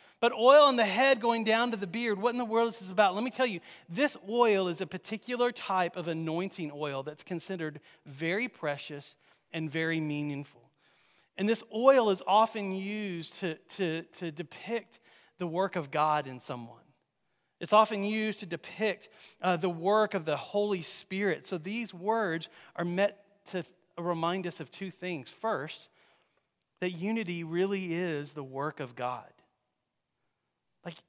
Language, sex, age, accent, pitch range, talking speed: English, male, 40-59, American, 165-210 Hz, 165 wpm